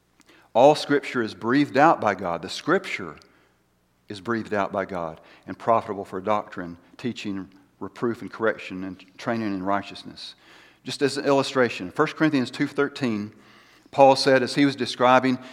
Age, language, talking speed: 50-69, English, 150 wpm